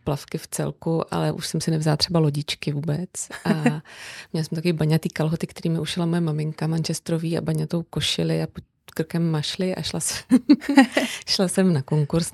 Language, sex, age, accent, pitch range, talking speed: Czech, female, 30-49, native, 155-175 Hz, 175 wpm